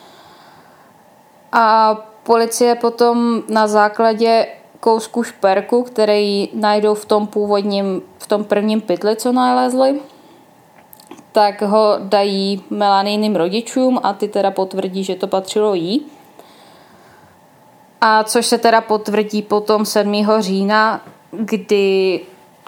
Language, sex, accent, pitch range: Czech, female, native, 200-230 Hz